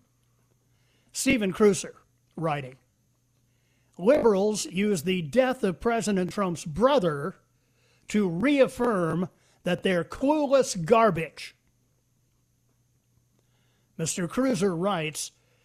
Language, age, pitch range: English, 50-69, 145-225 Hz